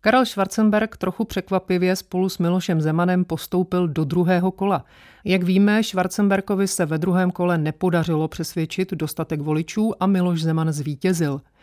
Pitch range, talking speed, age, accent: 160-195 Hz, 140 wpm, 40-59, native